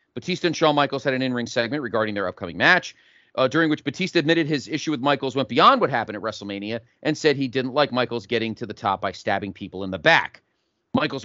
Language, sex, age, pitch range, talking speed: English, male, 40-59, 110-150 Hz, 235 wpm